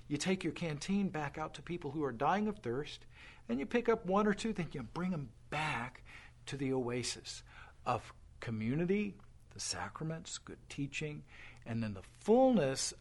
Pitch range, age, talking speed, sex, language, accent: 120-190 Hz, 50-69, 175 wpm, male, English, American